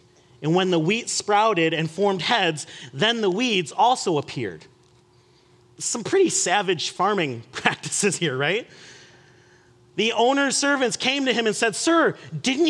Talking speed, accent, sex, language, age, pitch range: 140 wpm, American, male, English, 30-49, 155-230 Hz